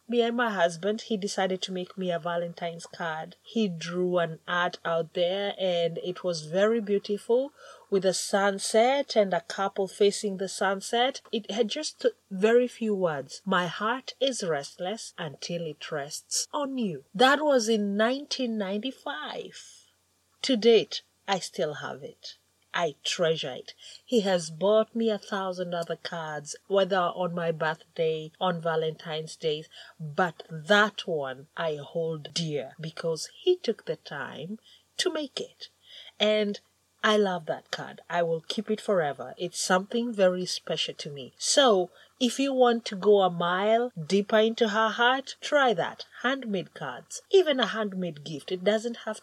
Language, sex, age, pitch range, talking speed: English, female, 30-49, 170-230 Hz, 160 wpm